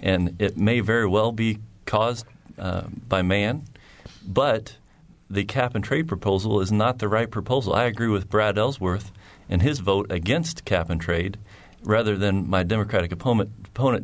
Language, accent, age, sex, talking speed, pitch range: English, American, 40-59, male, 150 wpm, 95-110 Hz